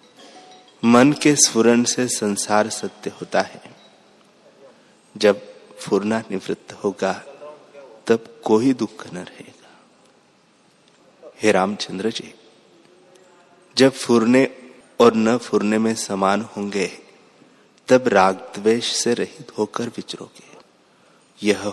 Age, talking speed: 30-49, 100 wpm